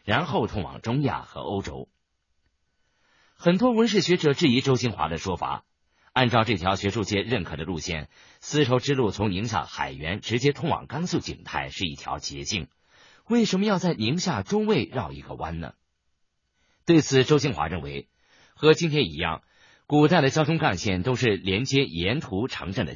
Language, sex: Chinese, male